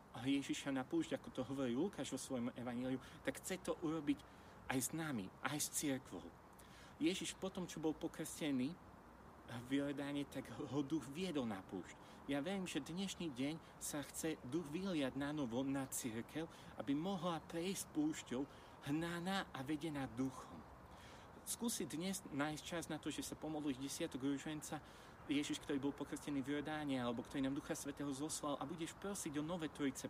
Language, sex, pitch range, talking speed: Slovak, male, 135-165 Hz, 165 wpm